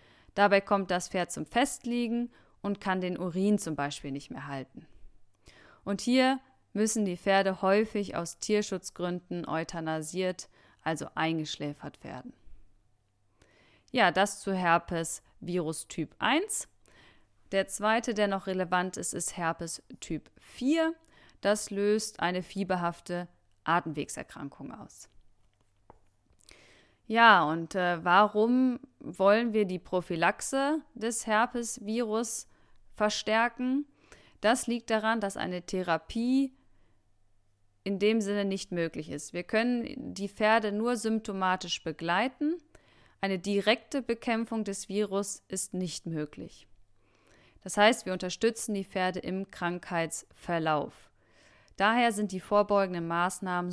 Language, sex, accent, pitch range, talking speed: German, female, German, 165-220 Hz, 110 wpm